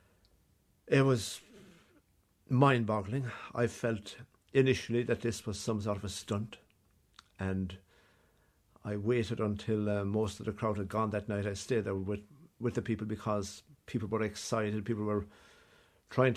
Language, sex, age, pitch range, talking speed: English, male, 60-79, 100-115 Hz, 150 wpm